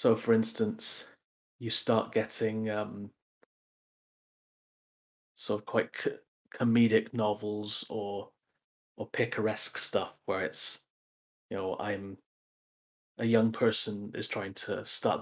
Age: 30-49